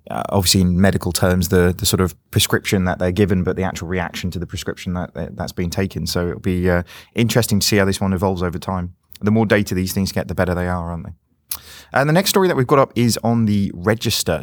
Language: English